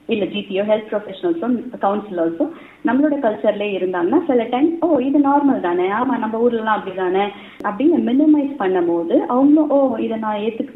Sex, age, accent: female, 30-49, native